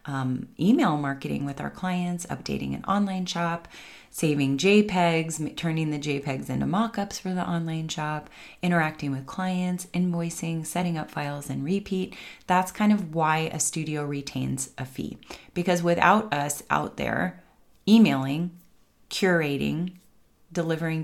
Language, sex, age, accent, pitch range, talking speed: English, female, 30-49, American, 145-170 Hz, 135 wpm